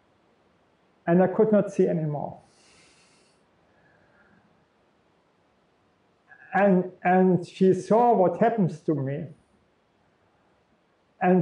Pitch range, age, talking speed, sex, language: 155-190 Hz, 50-69, 80 wpm, male, English